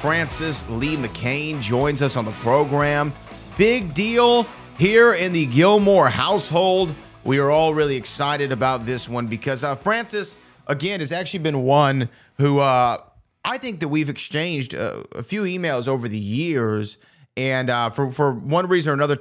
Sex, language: male, English